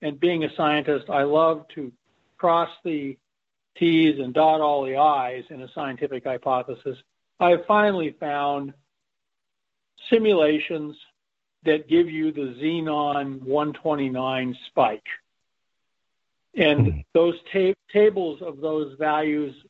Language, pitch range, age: English, 140-160 Hz, 50-69